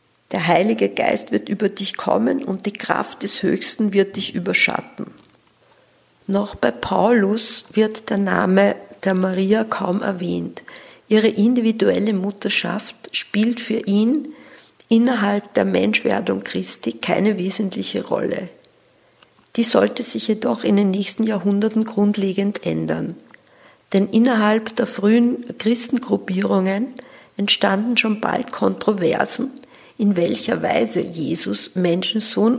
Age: 50-69